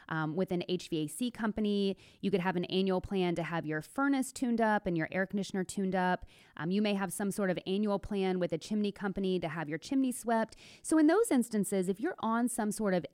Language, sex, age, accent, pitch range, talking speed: English, female, 30-49, American, 175-235 Hz, 235 wpm